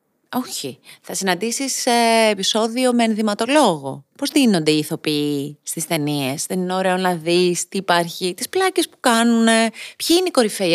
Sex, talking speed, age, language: female, 150 wpm, 30-49, Greek